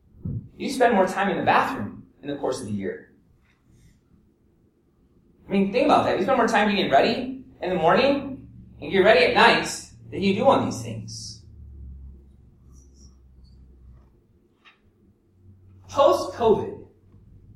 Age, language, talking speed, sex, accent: 30-49, English, 135 wpm, male, American